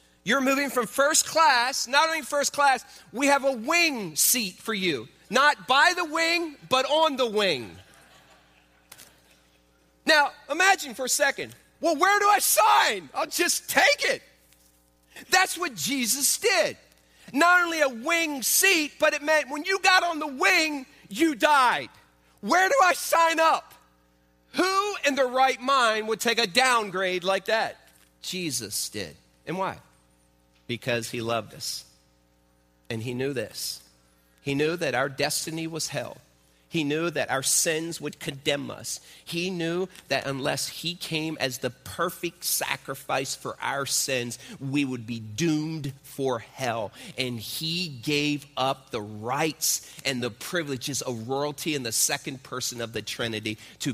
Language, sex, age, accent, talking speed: English, male, 40-59, American, 155 wpm